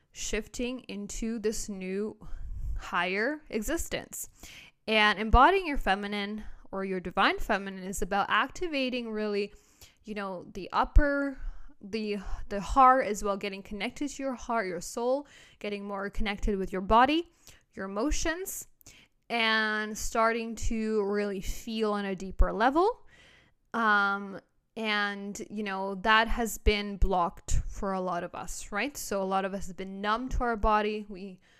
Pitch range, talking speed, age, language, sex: 200-235 Hz, 145 wpm, 10-29, English, female